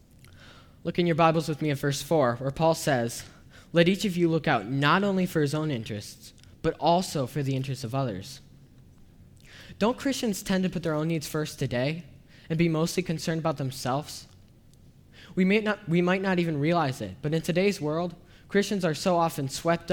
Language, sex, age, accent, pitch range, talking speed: English, male, 10-29, American, 125-180 Hz, 190 wpm